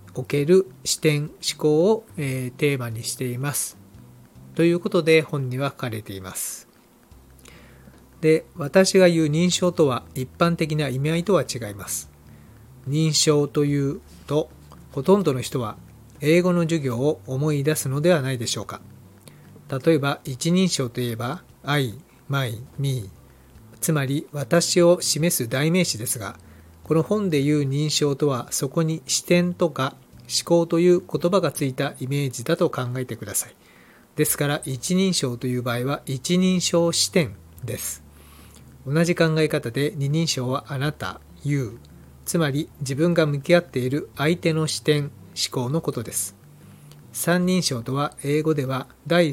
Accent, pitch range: native, 120-160 Hz